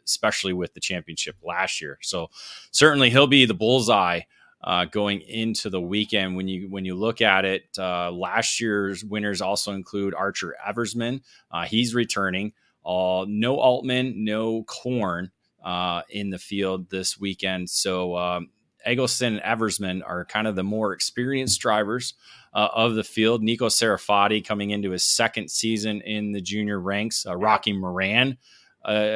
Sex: male